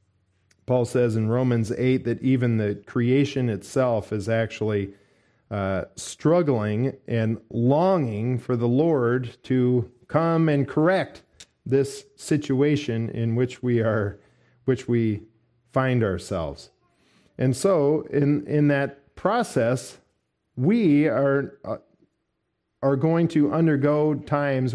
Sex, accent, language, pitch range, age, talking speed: male, American, English, 110-140 Hz, 40-59, 115 wpm